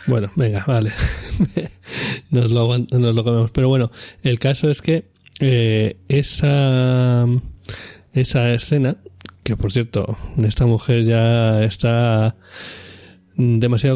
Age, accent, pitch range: 20-39, Spanish, 110-125 Hz